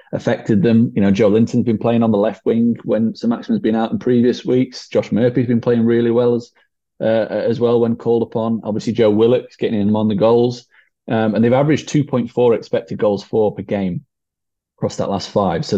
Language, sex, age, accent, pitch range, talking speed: English, male, 20-39, British, 105-125 Hz, 215 wpm